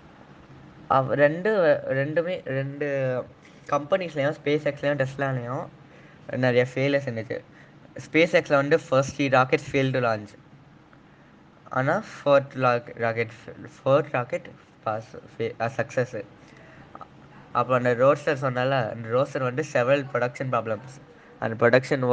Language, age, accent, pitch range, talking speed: Tamil, 10-29, native, 125-145 Hz, 105 wpm